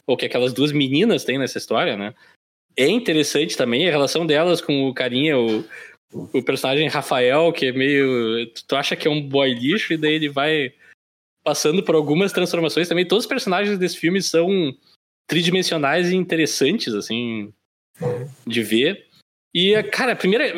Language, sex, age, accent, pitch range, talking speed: Portuguese, male, 20-39, Brazilian, 140-210 Hz, 165 wpm